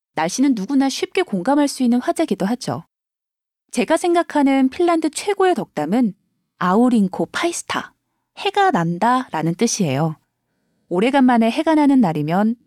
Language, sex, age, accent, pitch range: Korean, female, 20-39, native, 195-275 Hz